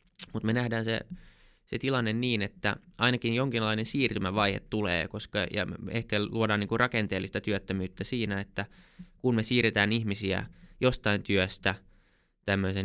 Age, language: 20-39, Finnish